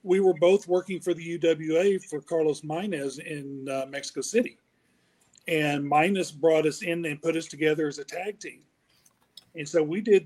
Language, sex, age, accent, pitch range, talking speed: English, male, 40-59, American, 135-170 Hz, 180 wpm